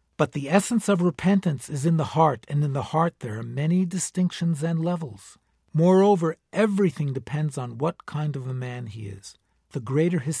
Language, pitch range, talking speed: English, 130-170 Hz, 190 wpm